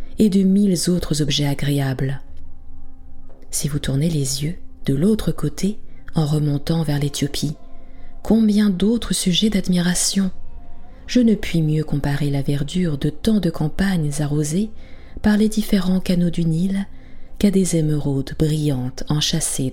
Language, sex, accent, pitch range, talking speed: French, female, French, 135-190 Hz, 135 wpm